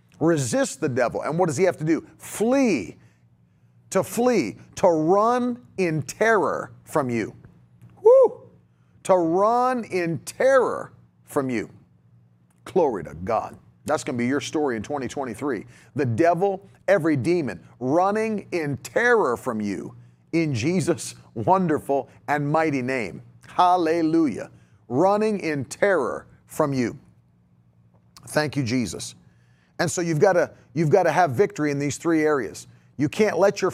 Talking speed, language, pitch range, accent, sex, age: 135 wpm, English, 125-185 Hz, American, male, 40-59